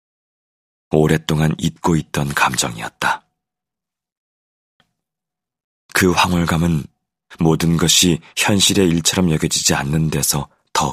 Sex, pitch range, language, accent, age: male, 75-90 Hz, Korean, native, 40-59